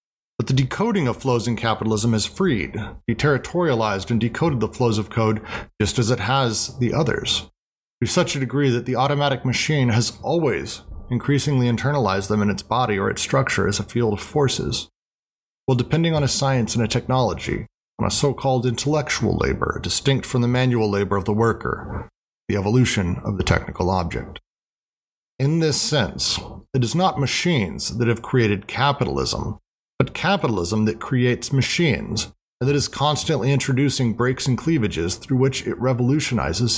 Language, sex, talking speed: English, male, 165 wpm